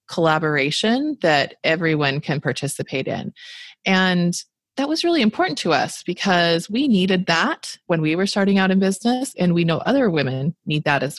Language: English